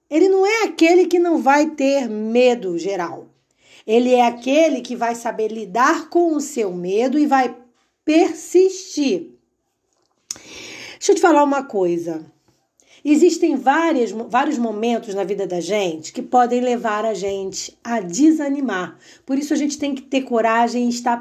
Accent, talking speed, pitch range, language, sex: Brazilian, 155 wpm, 215-310 Hz, Portuguese, female